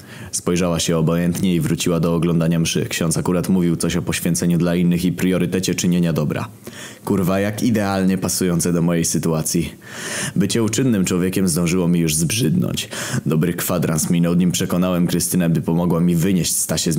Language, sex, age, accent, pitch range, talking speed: Polish, male, 20-39, native, 85-95 Hz, 165 wpm